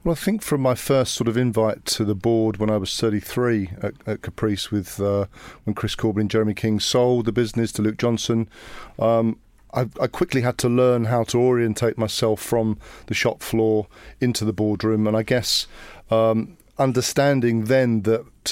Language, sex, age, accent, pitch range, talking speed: English, male, 40-59, British, 110-125 Hz, 190 wpm